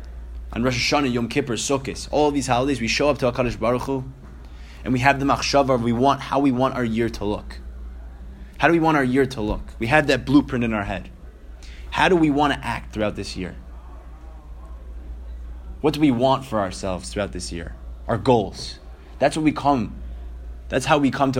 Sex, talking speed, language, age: male, 215 wpm, English, 20-39